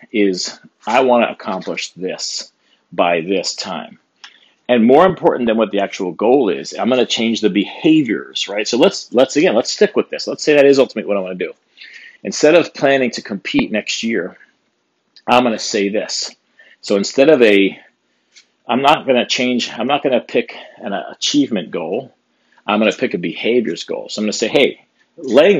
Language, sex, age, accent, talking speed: English, male, 40-59, American, 200 wpm